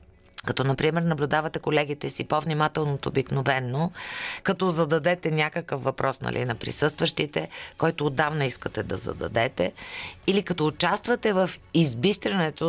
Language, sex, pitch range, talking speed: Bulgarian, female, 150-185 Hz, 115 wpm